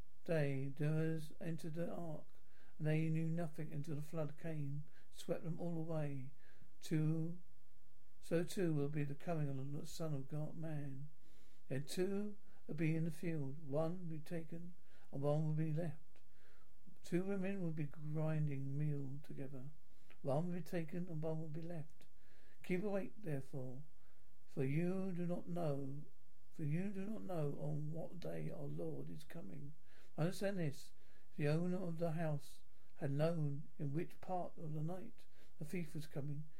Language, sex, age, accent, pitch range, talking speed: English, male, 60-79, British, 145-170 Hz, 165 wpm